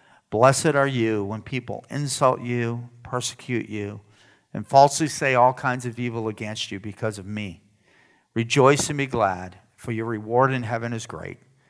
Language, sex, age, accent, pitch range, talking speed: English, male, 50-69, American, 110-135 Hz, 165 wpm